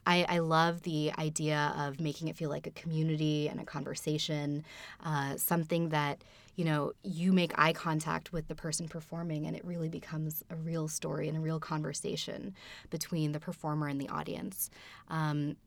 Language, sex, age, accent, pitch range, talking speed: English, female, 20-39, American, 150-180 Hz, 175 wpm